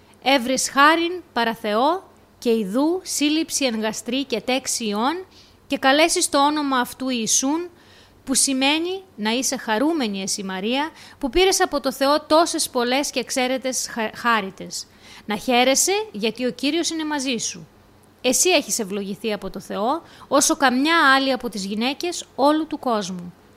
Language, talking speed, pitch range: Greek, 145 wpm, 220-295 Hz